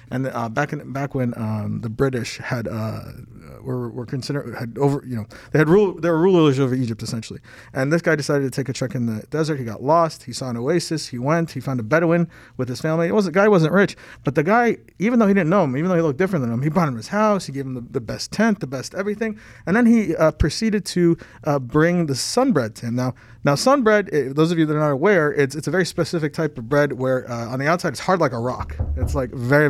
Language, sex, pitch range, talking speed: English, male, 125-170 Hz, 270 wpm